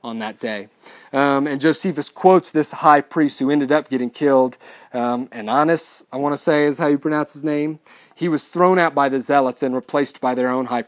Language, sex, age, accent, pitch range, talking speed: English, male, 30-49, American, 125-155 Hz, 220 wpm